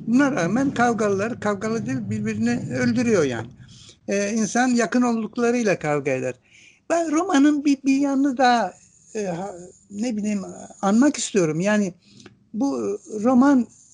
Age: 60-79